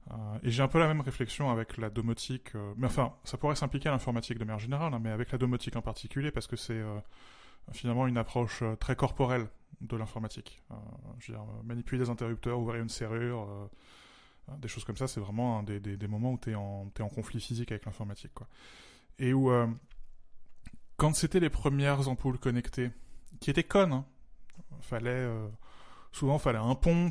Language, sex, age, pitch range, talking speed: French, male, 20-39, 110-135 Hz, 210 wpm